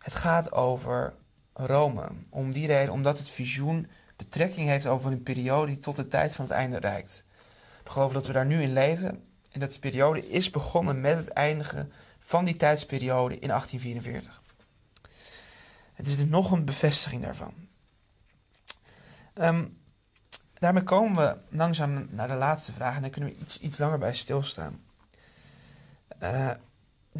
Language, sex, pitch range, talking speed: Dutch, male, 125-150 Hz, 155 wpm